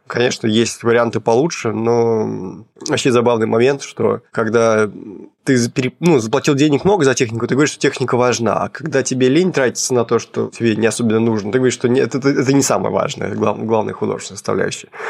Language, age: Russian, 20-39